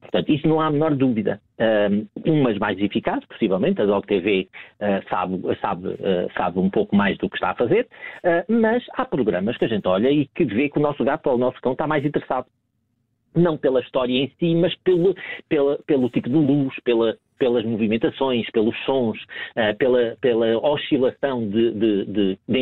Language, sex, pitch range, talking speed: Portuguese, male, 110-150 Hz, 180 wpm